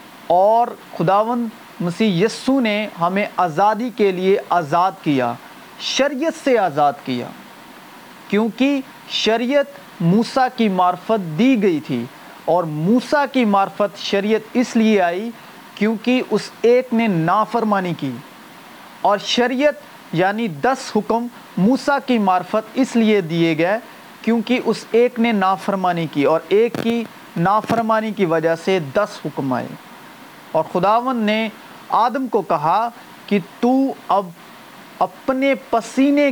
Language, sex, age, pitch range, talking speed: Urdu, male, 40-59, 180-240 Hz, 125 wpm